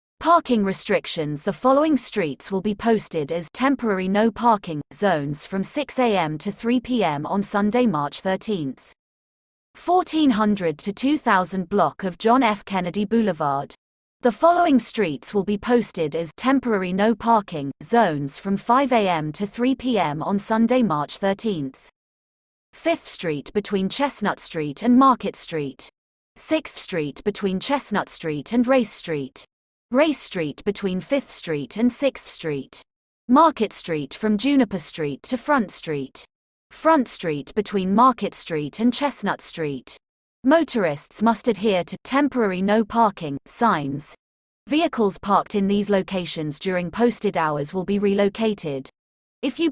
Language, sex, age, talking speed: French, female, 30-49, 135 wpm